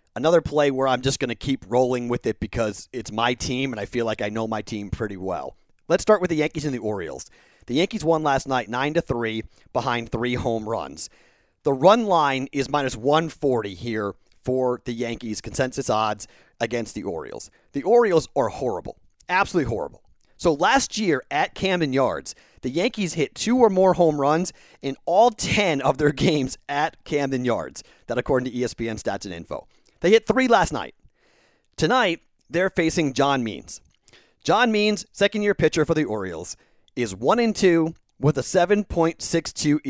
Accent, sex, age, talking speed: American, male, 40-59, 175 wpm